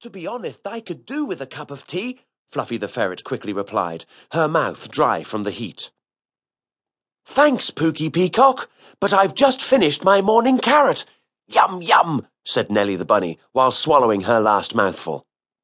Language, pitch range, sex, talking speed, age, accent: English, 125-190 Hz, male, 165 wpm, 40-59, British